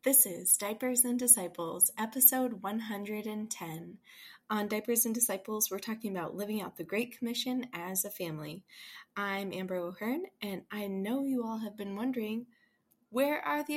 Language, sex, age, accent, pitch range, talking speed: English, female, 20-39, American, 180-240 Hz, 155 wpm